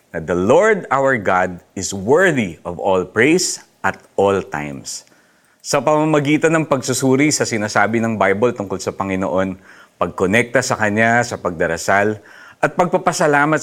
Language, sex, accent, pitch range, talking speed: Filipino, male, native, 95-130 Hz, 130 wpm